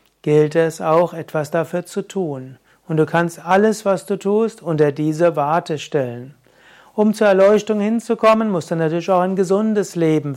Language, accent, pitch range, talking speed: German, German, 155-185 Hz, 170 wpm